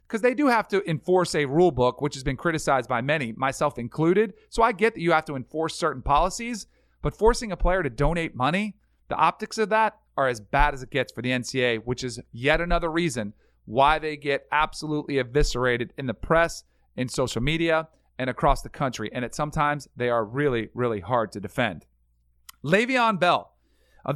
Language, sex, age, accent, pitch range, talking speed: English, male, 40-59, American, 140-200 Hz, 195 wpm